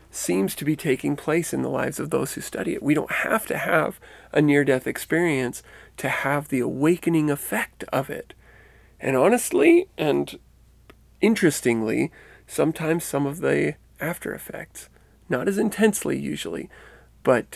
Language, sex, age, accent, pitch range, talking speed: English, male, 40-59, American, 125-165 Hz, 145 wpm